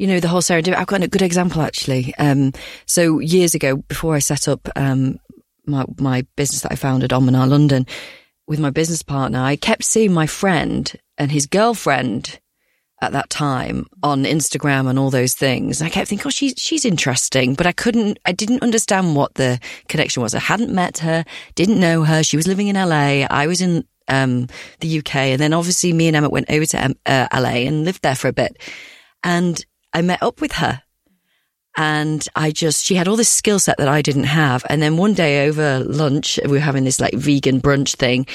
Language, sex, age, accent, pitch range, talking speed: English, female, 40-59, British, 140-180 Hz, 210 wpm